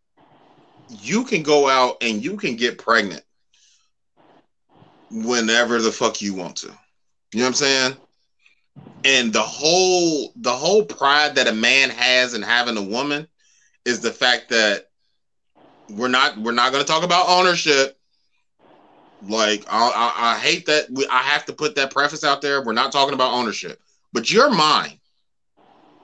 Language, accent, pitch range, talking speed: English, American, 120-155 Hz, 160 wpm